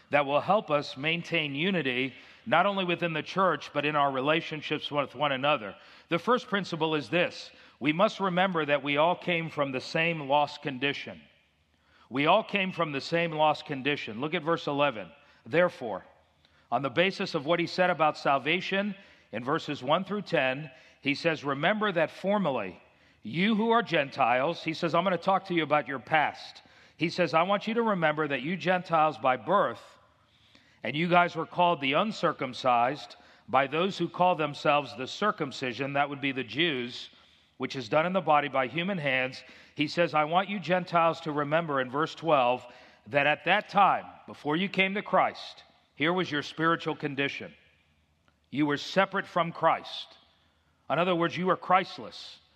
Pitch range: 140-180 Hz